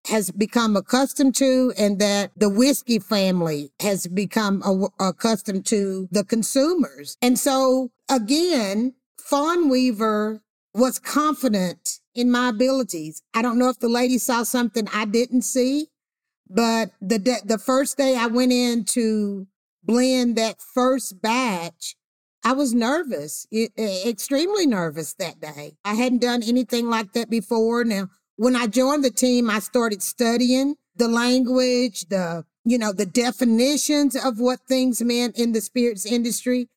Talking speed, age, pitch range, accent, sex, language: 150 wpm, 50-69, 205-255 Hz, American, female, English